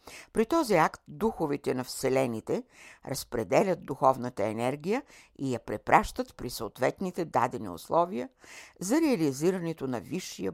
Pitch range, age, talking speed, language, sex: 135-185 Hz, 60-79, 115 wpm, Bulgarian, female